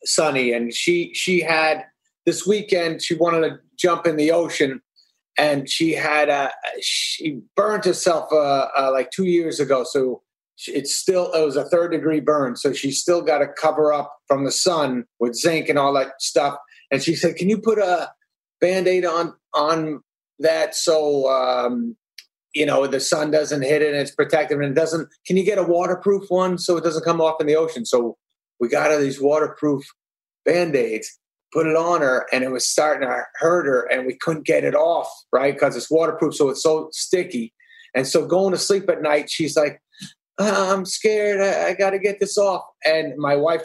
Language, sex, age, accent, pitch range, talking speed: English, male, 30-49, American, 145-175 Hz, 200 wpm